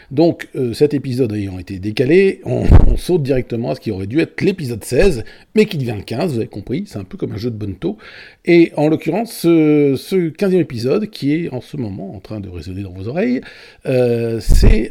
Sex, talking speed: male, 220 wpm